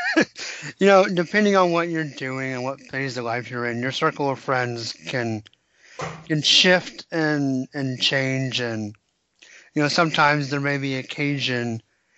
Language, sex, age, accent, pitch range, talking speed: English, male, 30-49, American, 125-155 Hz, 160 wpm